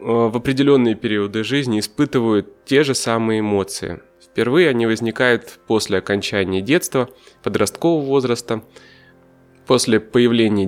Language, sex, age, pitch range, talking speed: Russian, male, 20-39, 100-130 Hz, 105 wpm